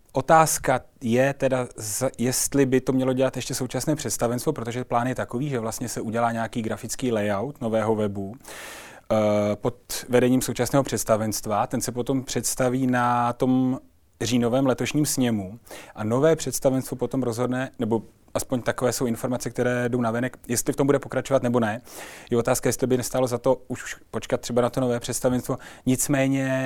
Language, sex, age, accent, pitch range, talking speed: Czech, male, 30-49, native, 115-130 Hz, 170 wpm